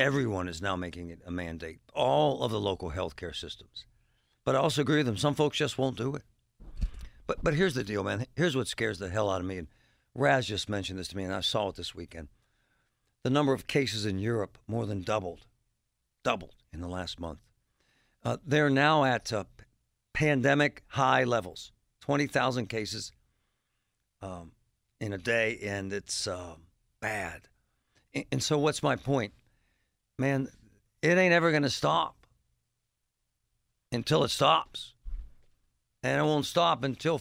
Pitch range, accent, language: 100-150 Hz, American, English